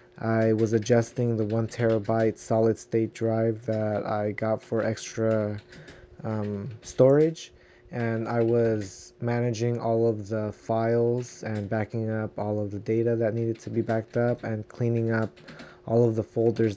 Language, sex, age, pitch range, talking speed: English, male, 20-39, 110-125 Hz, 155 wpm